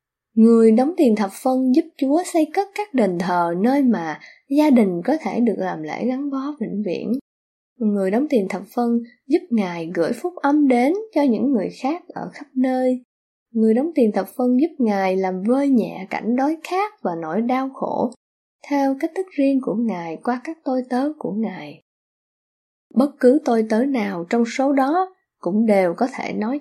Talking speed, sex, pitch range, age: 190 wpm, female, 200-275 Hz, 10-29